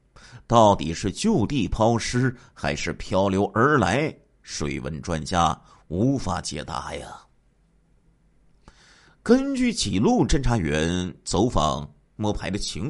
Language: Chinese